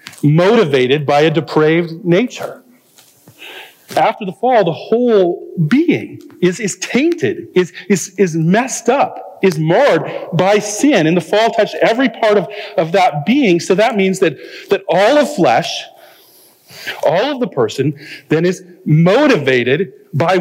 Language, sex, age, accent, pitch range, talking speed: English, male, 40-59, American, 135-220 Hz, 145 wpm